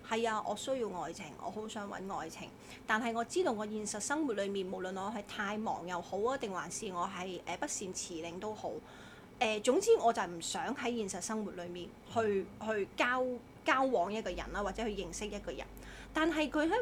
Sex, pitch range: female, 205-275 Hz